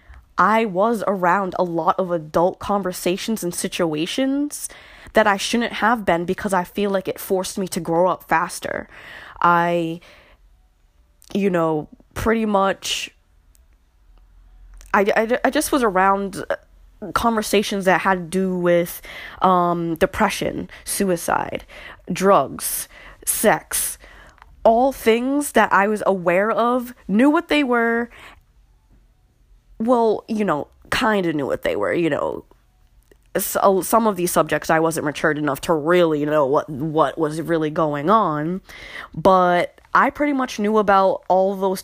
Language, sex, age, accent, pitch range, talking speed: English, female, 10-29, American, 165-220 Hz, 140 wpm